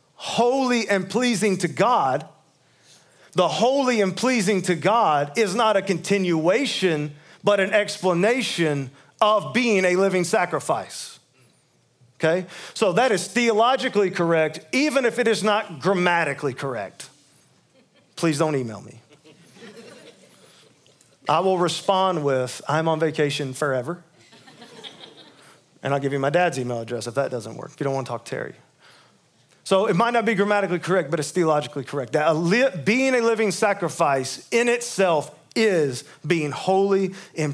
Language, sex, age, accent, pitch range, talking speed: English, male, 40-59, American, 150-205 Hz, 145 wpm